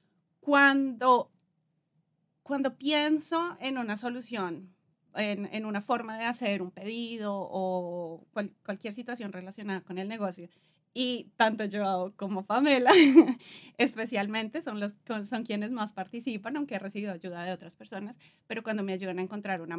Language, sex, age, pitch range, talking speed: Spanish, female, 30-49, 185-235 Hz, 145 wpm